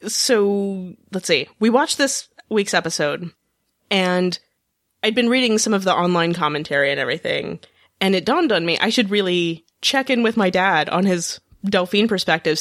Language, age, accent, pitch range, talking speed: English, 20-39, American, 180-245 Hz, 170 wpm